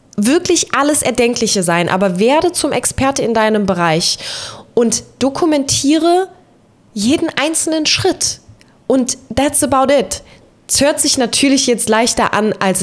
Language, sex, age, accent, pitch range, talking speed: German, female, 20-39, German, 205-280 Hz, 130 wpm